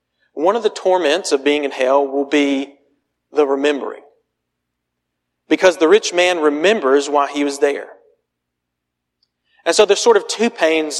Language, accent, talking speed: English, American, 155 wpm